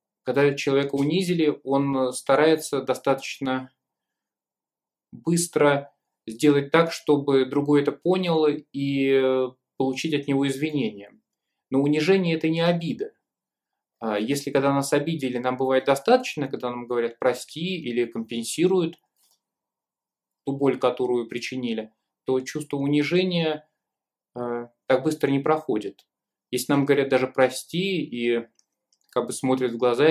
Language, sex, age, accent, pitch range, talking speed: Russian, male, 20-39, native, 130-155 Hz, 115 wpm